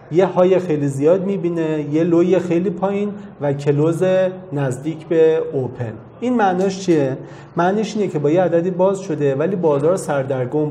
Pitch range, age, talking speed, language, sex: 135-175 Hz, 40-59, 155 wpm, Arabic, male